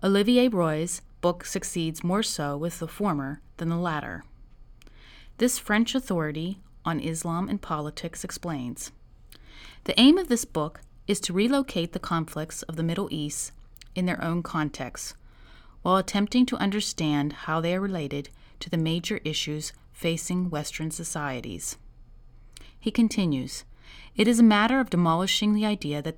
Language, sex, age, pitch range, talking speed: English, female, 30-49, 155-200 Hz, 145 wpm